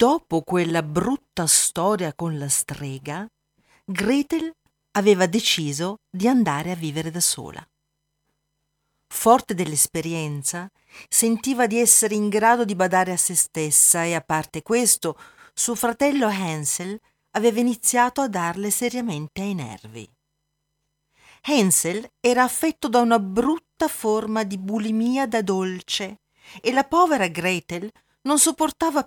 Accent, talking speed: native, 120 wpm